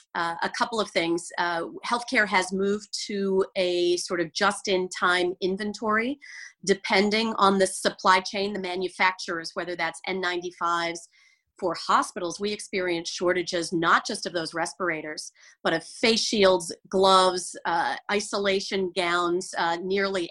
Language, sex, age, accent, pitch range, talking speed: English, female, 40-59, American, 175-210 Hz, 135 wpm